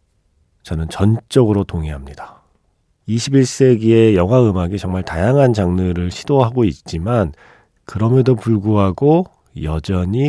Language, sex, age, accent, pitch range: Korean, male, 40-59, native, 85-125 Hz